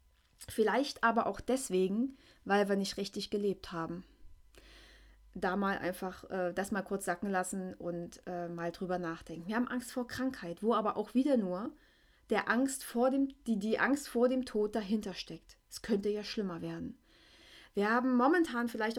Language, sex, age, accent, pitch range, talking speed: German, female, 30-49, German, 210-270 Hz, 175 wpm